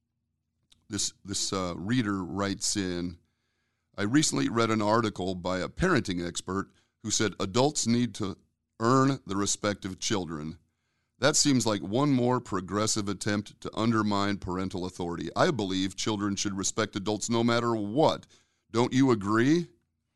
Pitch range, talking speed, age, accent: 95-115 Hz, 145 wpm, 40-59, American